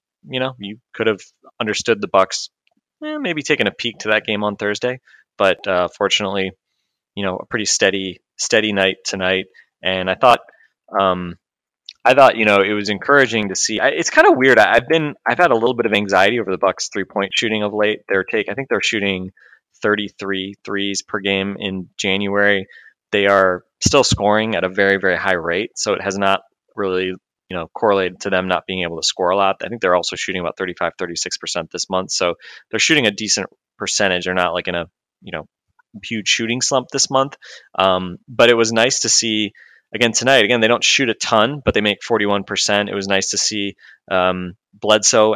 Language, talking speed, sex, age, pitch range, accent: English, 210 wpm, male, 20-39, 95-110 Hz, American